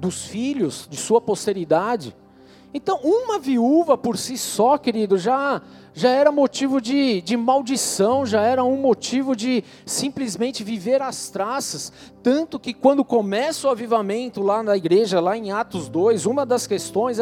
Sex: male